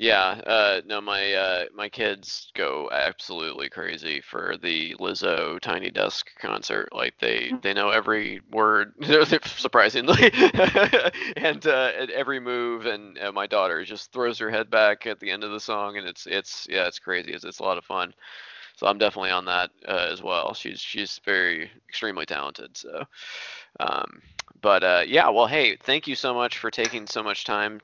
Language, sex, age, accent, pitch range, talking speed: English, male, 20-39, American, 100-125 Hz, 180 wpm